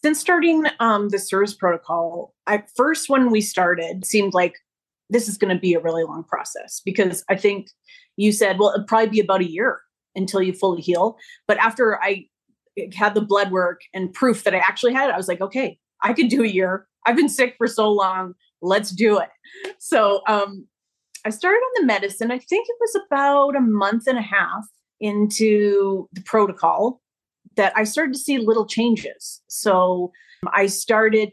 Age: 30-49